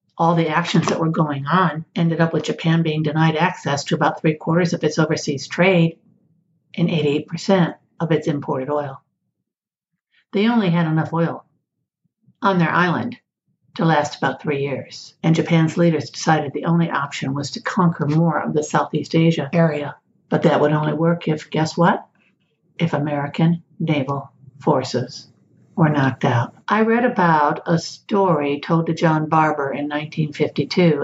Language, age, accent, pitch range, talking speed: English, 60-79, American, 145-170 Hz, 160 wpm